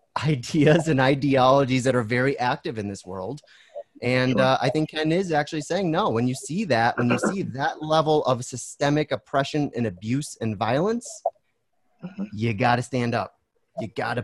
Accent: American